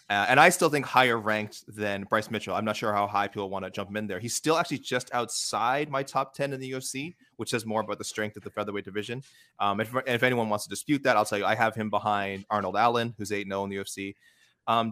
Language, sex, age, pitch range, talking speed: English, male, 30-49, 105-135 Hz, 275 wpm